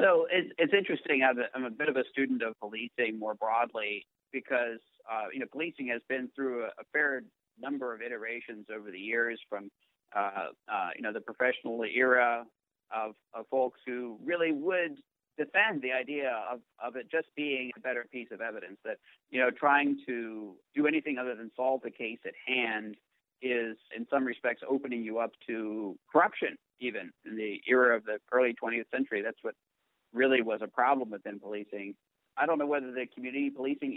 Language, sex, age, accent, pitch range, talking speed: English, male, 50-69, American, 115-135 Hz, 180 wpm